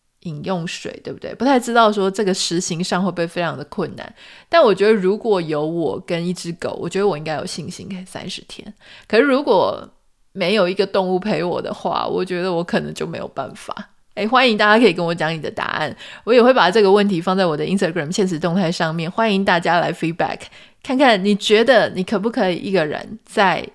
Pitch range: 175-210 Hz